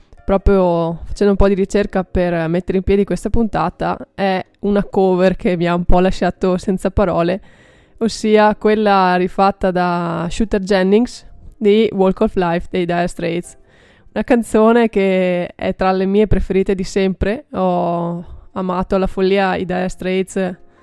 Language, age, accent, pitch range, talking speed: Italian, 20-39, native, 180-200 Hz, 155 wpm